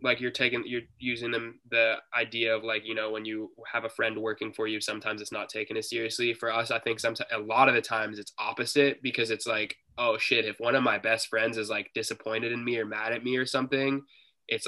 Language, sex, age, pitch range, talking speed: English, male, 20-39, 110-130 Hz, 250 wpm